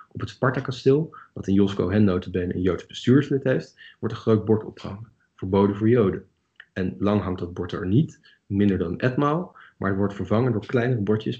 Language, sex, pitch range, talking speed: Dutch, male, 95-110 Hz, 200 wpm